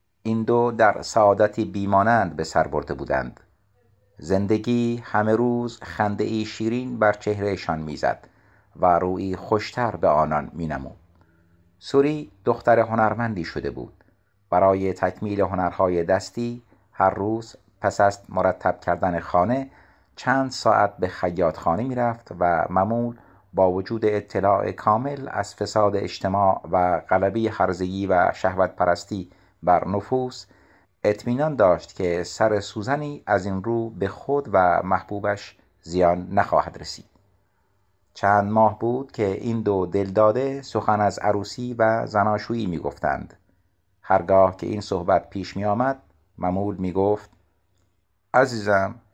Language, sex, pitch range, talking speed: Persian, male, 95-115 Hz, 125 wpm